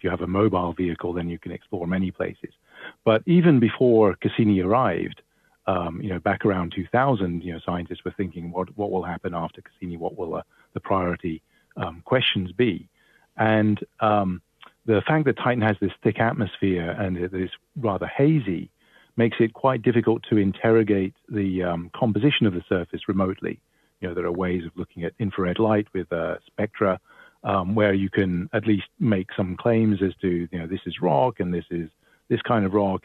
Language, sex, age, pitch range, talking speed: English, male, 50-69, 90-110 Hz, 190 wpm